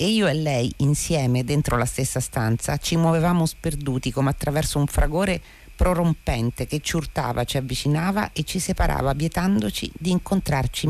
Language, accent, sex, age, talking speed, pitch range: Italian, native, female, 40-59, 155 wpm, 130-170 Hz